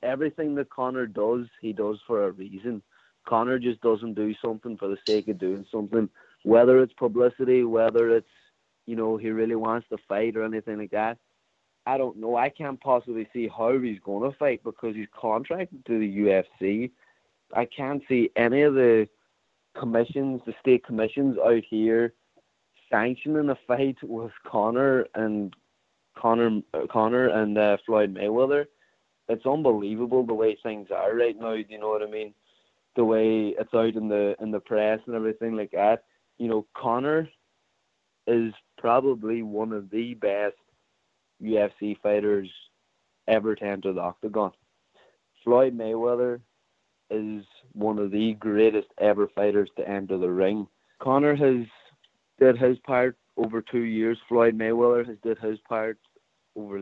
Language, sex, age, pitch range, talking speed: English, male, 30-49, 105-120 Hz, 155 wpm